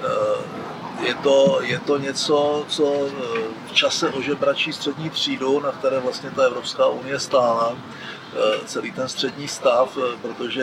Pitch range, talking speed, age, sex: 130-155 Hz, 130 wpm, 40-59, male